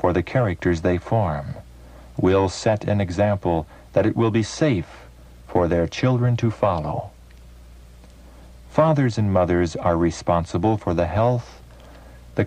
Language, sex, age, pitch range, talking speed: English, male, 60-79, 75-115 Hz, 135 wpm